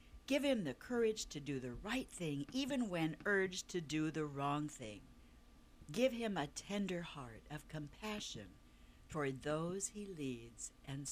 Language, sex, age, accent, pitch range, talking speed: English, female, 60-79, American, 125-195 Hz, 155 wpm